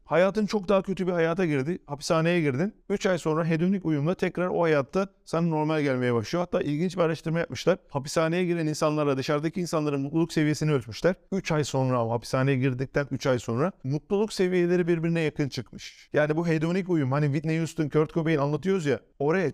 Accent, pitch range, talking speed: native, 140-180 Hz, 180 wpm